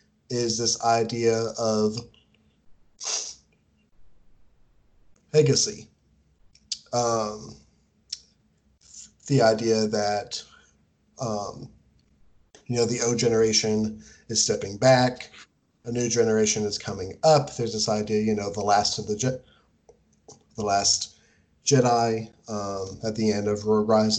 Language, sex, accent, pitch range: English, male, American, 105-120 Hz